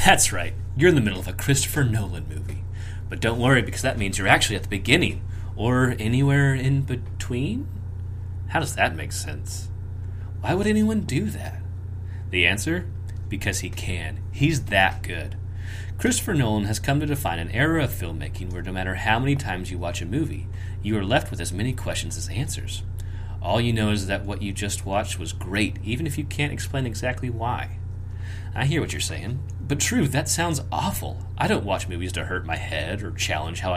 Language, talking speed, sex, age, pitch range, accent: English, 200 wpm, male, 30-49, 95-115 Hz, American